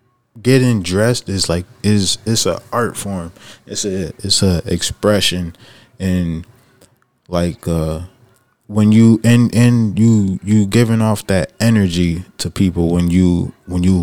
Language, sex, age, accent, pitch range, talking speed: English, male, 20-39, American, 90-105 Hz, 140 wpm